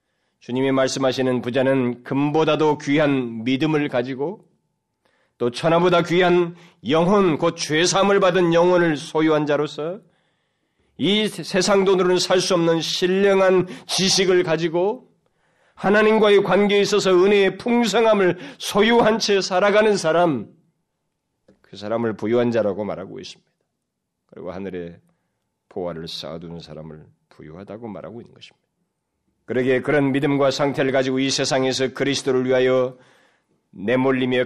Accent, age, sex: native, 30-49, male